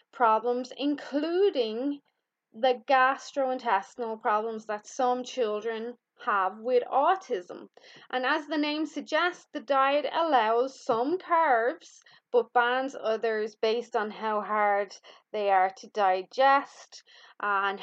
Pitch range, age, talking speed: 200-260 Hz, 20-39, 110 wpm